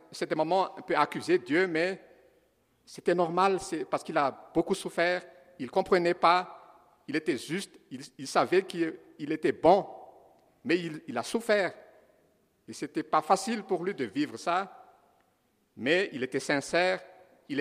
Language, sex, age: French, male, 60-79